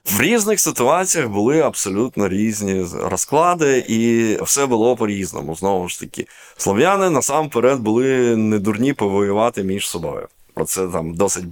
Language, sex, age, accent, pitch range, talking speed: Ukrainian, male, 20-39, native, 100-135 Hz, 135 wpm